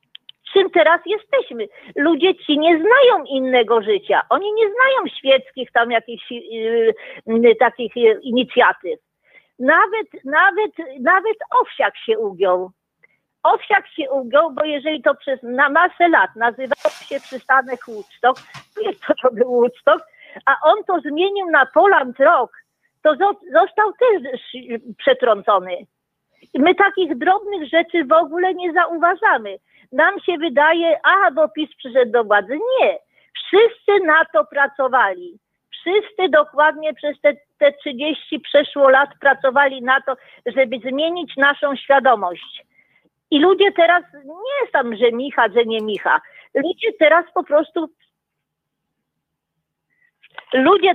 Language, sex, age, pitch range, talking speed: Polish, female, 50-69, 260-365 Hz, 130 wpm